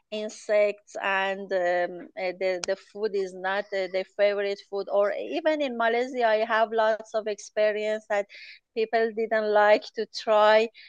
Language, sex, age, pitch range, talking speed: English, female, 30-49, 210-245 Hz, 150 wpm